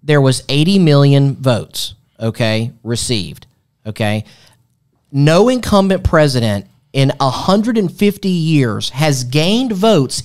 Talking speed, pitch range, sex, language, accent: 100 wpm, 130-175 Hz, male, English, American